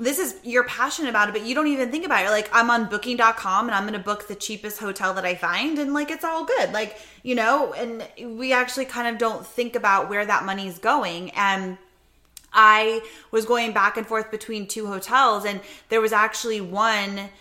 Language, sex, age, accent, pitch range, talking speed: English, female, 20-39, American, 195-230 Hz, 215 wpm